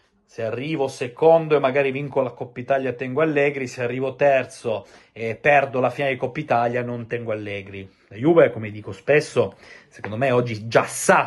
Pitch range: 115-160 Hz